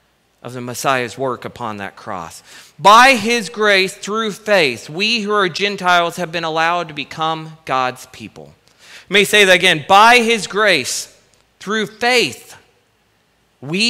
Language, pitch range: English, 180-235 Hz